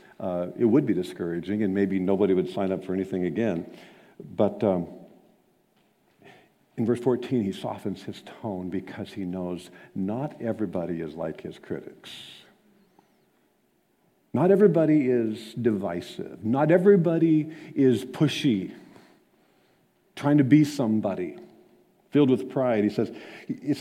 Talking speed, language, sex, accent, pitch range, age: 125 wpm, English, male, American, 105-160 Hz, 50-69